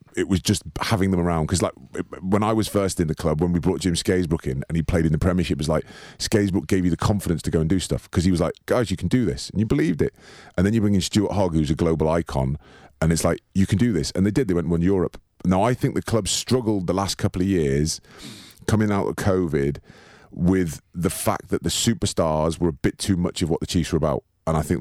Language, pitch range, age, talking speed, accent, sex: English, 80-95 Hz, 30-49, 275 wpm, British, male